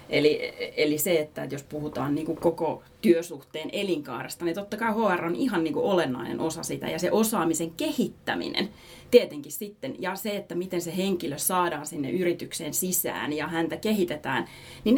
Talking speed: 160 wpm